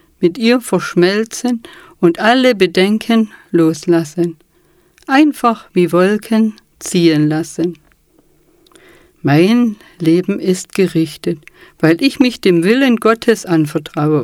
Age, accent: 50-69, German